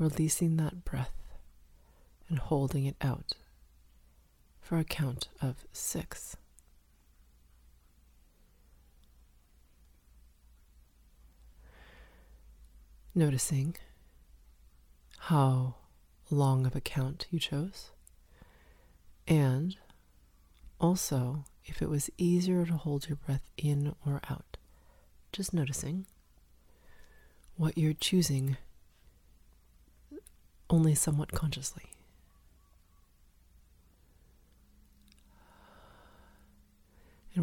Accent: American